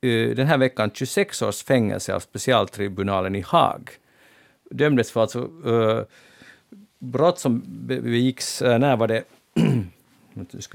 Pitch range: 105-130 Hz